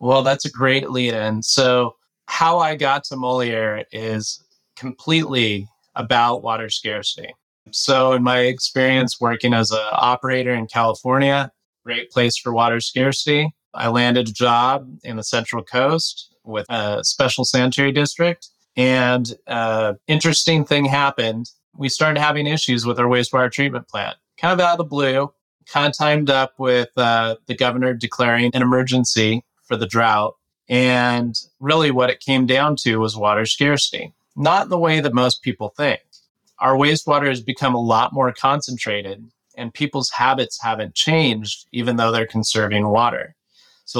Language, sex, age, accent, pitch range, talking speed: English, male, 20-39, American, 115-135 Hz, 155 wpm